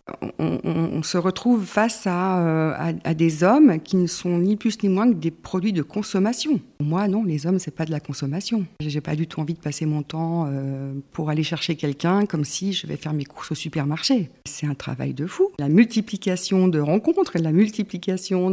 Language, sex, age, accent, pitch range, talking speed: French, female, 50-69, French, 155-195 Hz, 225 wpm